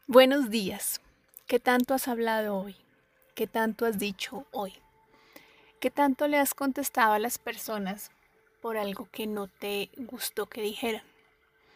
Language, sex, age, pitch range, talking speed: Spanish, female, 30-49, 215-245 Hz, 145 wpm